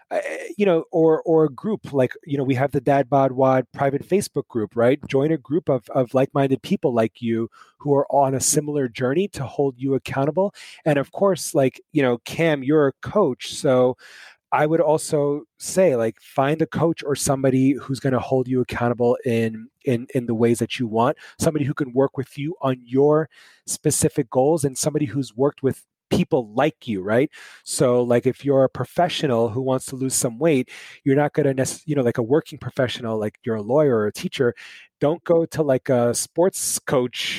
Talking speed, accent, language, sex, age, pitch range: 205 wpm, American, English, male, 30-49, 125-150 Hz